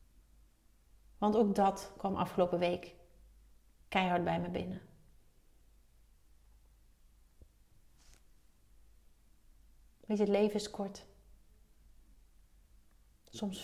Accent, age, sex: Dutch, 30-49, female